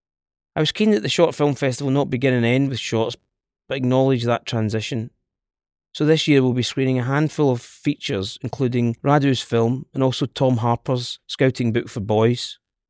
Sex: male